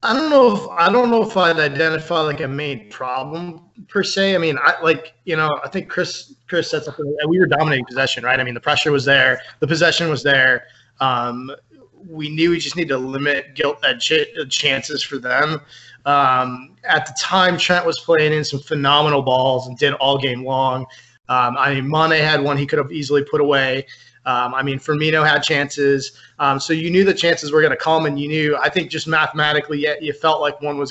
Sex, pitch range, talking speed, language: male, 135-165 Hz, 220 wpm, English